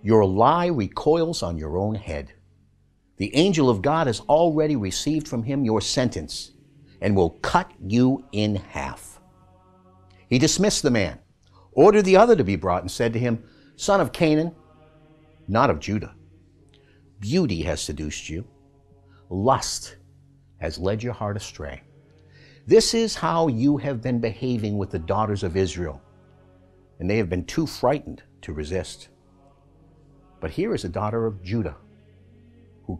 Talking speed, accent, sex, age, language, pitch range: 150 wpm, American, male, 60-79, English, 90-135 Hz